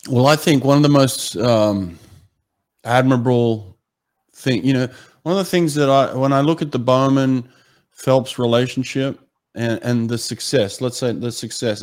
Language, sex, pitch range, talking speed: English, male, 110-140 Hz, 170 wpm